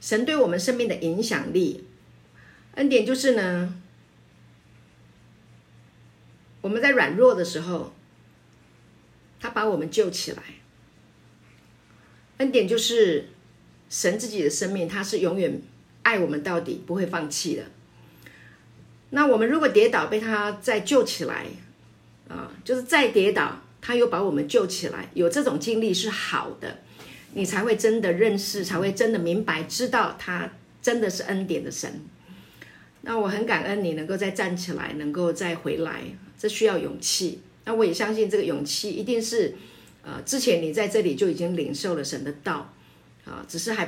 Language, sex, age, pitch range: Chinese, female, 50-69, 165-235 Hz